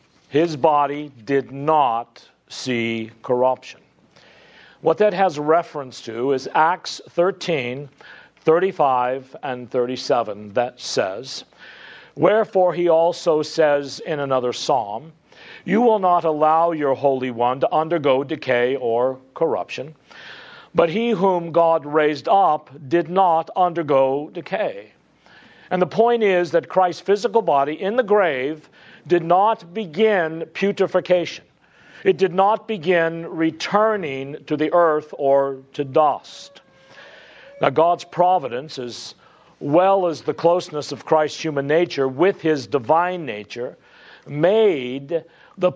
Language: English